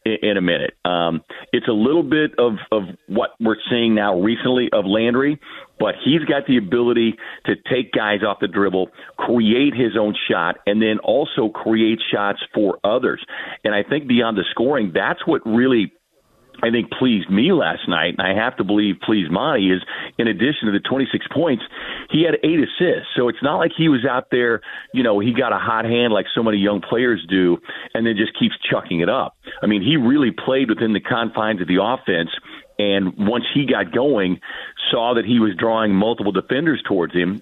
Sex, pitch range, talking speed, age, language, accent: male, 100-120 Hz, 200 wpm, 40-59, English, American